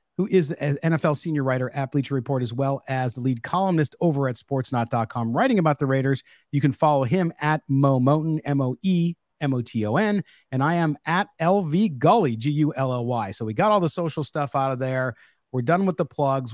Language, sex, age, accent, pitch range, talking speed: English, male, 40-59, American, 130-175 Hz, 185 wpm